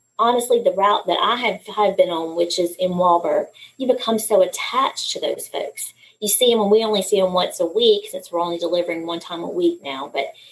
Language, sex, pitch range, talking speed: English, female, 175-225 Hz, 235 wpm